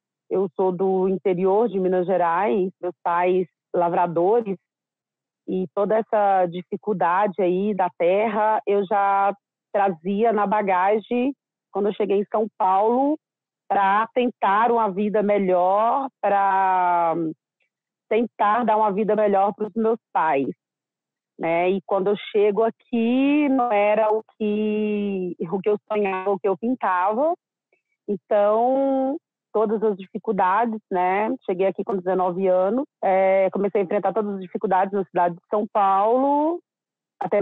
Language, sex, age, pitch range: Portuguese, female, 30-49, 190-225 Hz